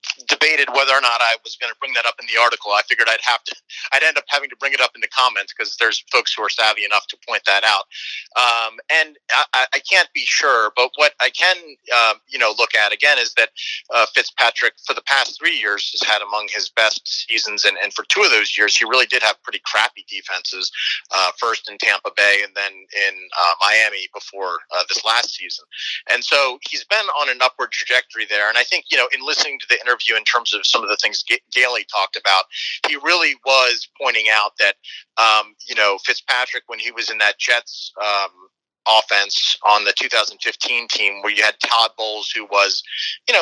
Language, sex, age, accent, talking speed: English, male, 30-49, American, 225 wpm